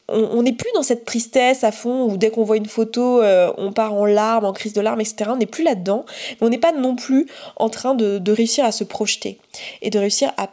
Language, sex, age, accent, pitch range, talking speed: French, female, 20-39, French, 205-245 Hz, 255 wpm